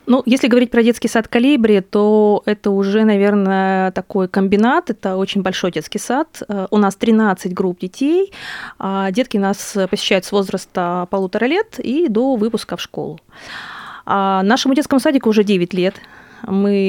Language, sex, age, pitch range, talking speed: Russian, female, 20-39, 195-235 Hz, 150 wpm